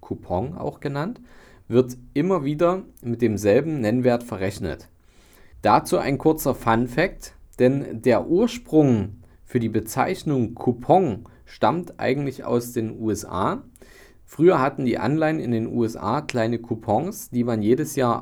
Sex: male